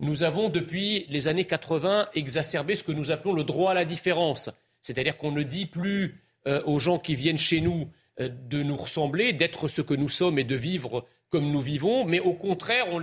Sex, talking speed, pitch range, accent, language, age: male, 215 wpm, 150-200 Hz, French, French, 40-59